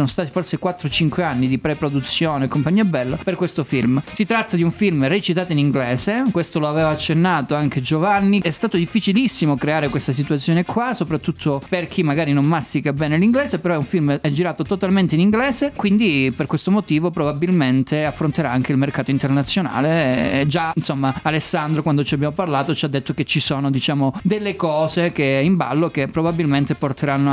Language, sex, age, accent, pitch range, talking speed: Italian, male, 20-39, native, 140-180 Hz, 180 wpm